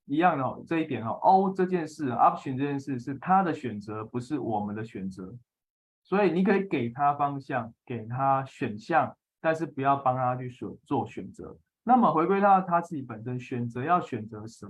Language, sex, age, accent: Chinese, male, 20-39, native